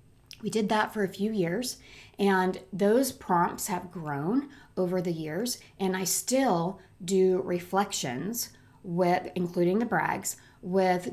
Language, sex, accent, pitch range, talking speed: English, female, American, 175-210 Hz, 135 wpm